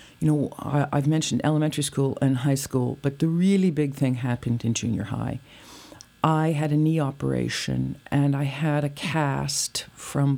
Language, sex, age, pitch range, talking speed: English, female, 50-69, 120-150 Hz, 170 wpm